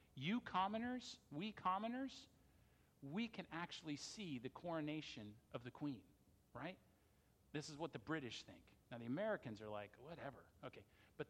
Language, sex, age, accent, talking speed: English, male, 50-69, American, 150 wpm